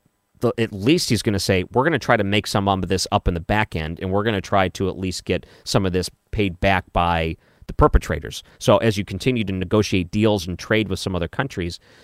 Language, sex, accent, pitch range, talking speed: English, male, American, 90-110 Hz, 250 wpm